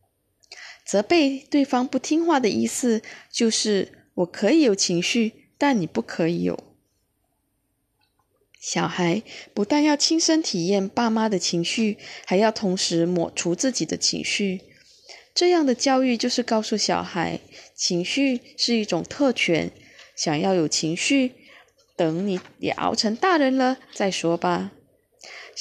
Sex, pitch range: female, 180-265 Hz